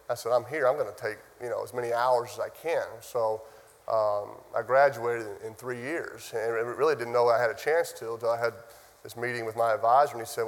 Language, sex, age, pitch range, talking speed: English, male, 30-49, 115-125 Hz, 245 wpm